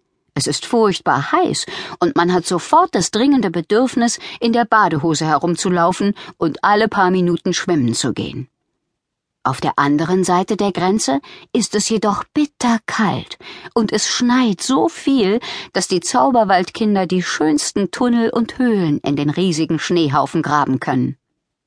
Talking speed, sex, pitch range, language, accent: 145 wpm, female, 165-235 Hz, German, German